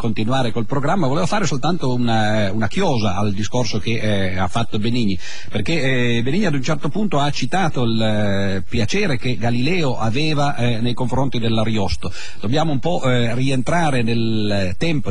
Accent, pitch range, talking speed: native, 105-145 Hz, 165 wpm